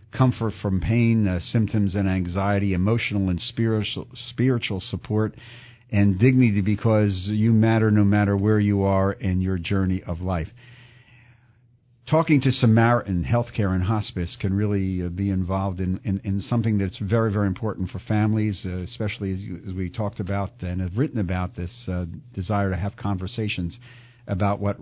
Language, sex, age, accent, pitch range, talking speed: English, male, 50-69, American, 95-120 Hz, 160 wpm